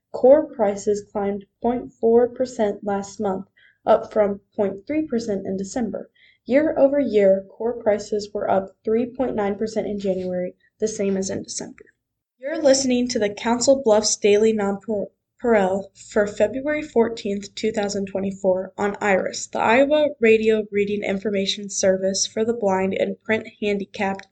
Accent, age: American, 10-29